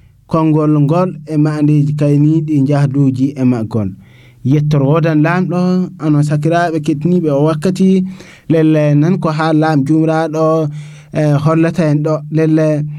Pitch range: 150-175 Hz